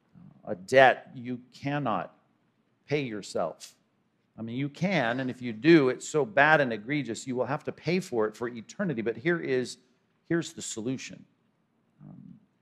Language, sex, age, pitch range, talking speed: English, male, 50-69, 120-155 Hz, 165 wpm